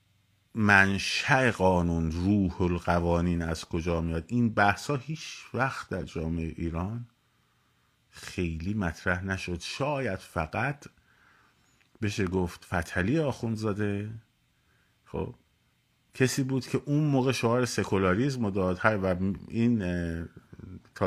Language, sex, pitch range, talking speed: Persian, male, 90-120 Hz, 110 wpm